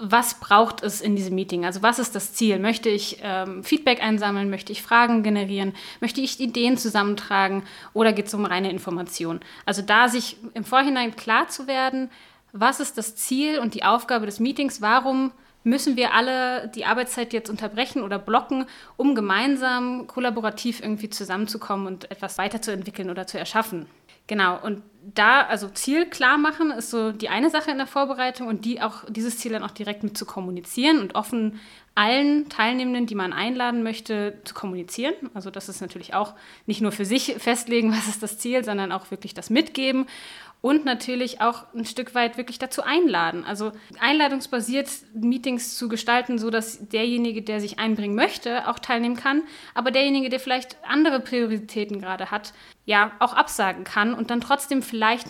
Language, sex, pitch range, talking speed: German, female, 210-255 Hz, 175 wpm